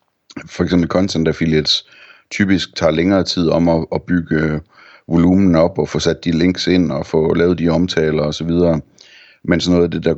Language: Danish